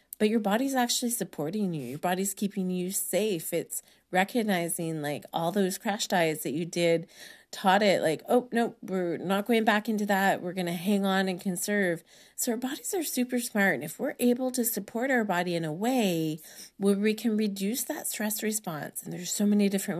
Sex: female